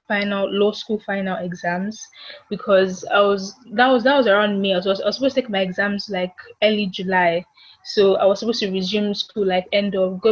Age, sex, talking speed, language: 10-29, female, 215 wpm, English